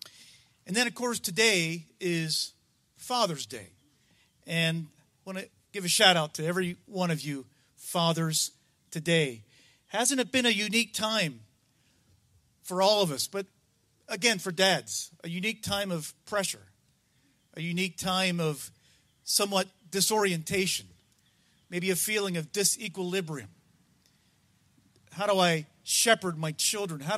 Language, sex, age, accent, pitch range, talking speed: English, male, 40-59, American, 150-205 Hz, 130 wpm